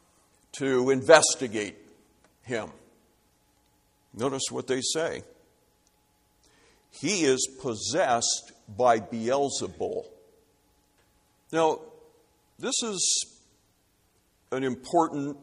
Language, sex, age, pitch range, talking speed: English, male, 60-79, 110-140 Hz, 65 wpm